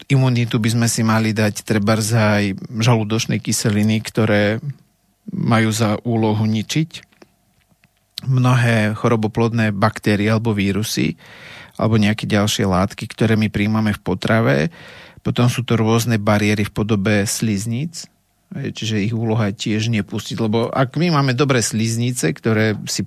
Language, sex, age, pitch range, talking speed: Slovak, male, 40-59, 105-120 Hz, 130 wpm